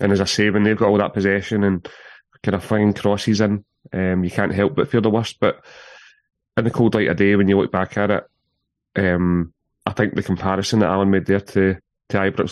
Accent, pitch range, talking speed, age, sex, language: British, 95-110 Hz, 235 wpm, 30-49, male, English